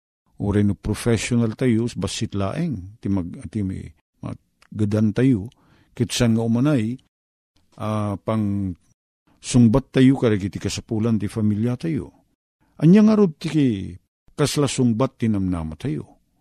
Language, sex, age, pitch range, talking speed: Filipino, male, 50-69, 95-125 Hz, 120 wpm